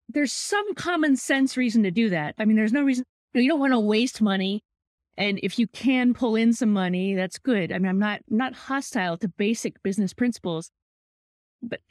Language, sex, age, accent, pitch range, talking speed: English, female, 20-39, American, 190-255 Hz, 210 wpm